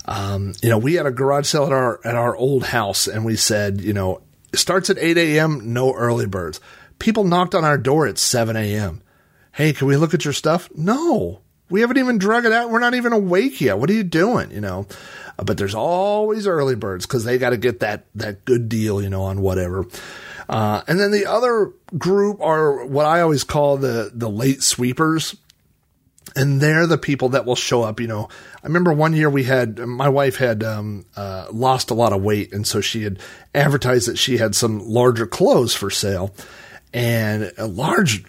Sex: male